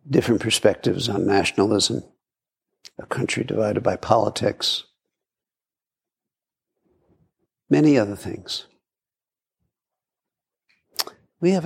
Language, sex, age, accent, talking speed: English, male, 60-79, American, 70 wpm